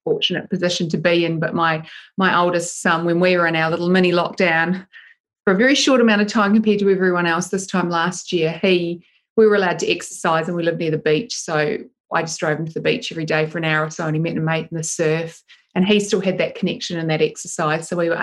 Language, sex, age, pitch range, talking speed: English, female, 30-49, 170-205 Hz, 265 wpm